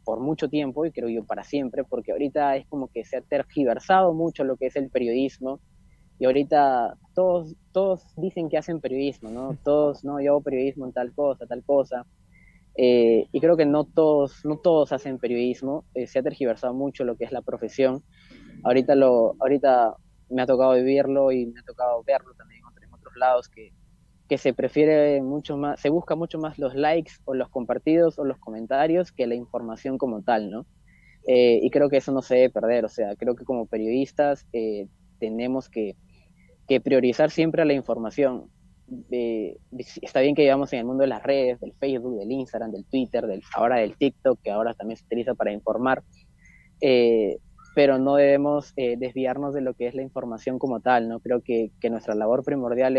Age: 20-39